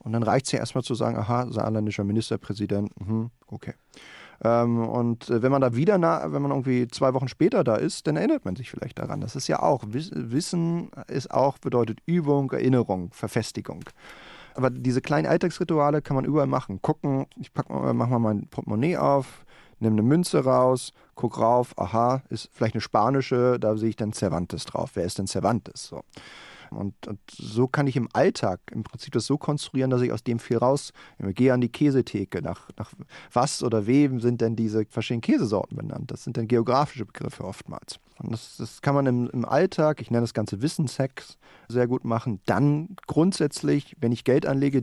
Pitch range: 115-140 Hz